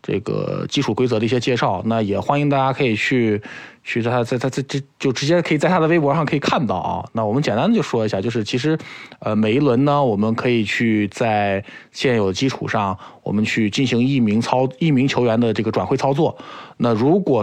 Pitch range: 105-135 Hz